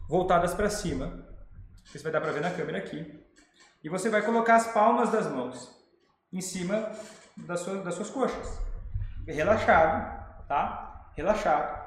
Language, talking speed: Portuguese, 145 wpm